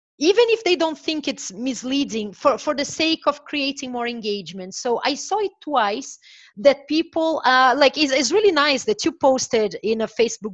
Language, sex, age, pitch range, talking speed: English, female, 30-49, 210-275 Hz, 195 wpm